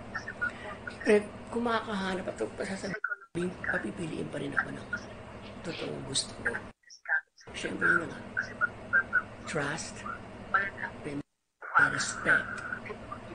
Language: Filipino